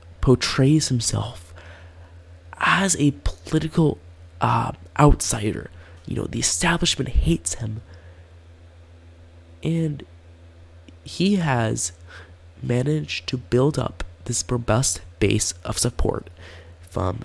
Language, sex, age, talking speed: English, male, 20-39, 90 wpm